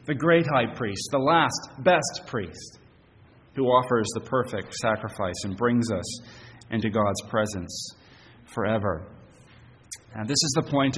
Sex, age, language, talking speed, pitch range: male, 30-49, English, 135 wpm, 105-125 Hz